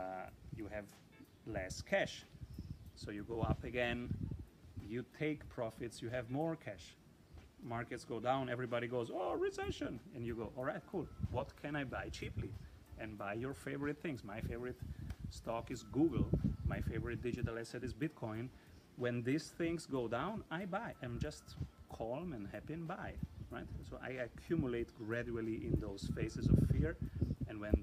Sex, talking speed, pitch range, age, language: male, 160 wpm, 100-130 Hz, 30-49, English